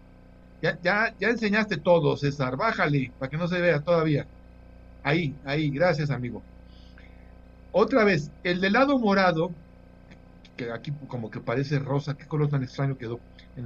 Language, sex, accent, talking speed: Spanish, male, Mexican, 150 wpm